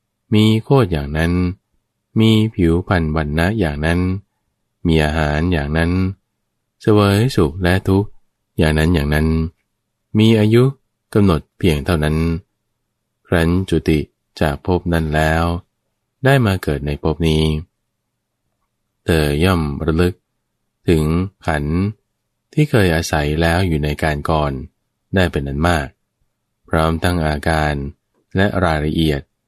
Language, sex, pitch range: English, male, 75-105 Hz